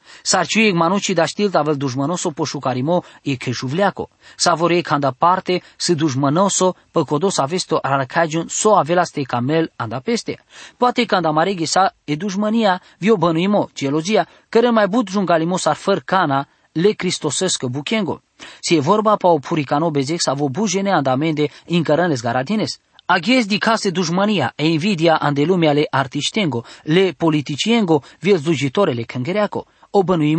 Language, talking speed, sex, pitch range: English, 140 wpm, male, 150-205 Hz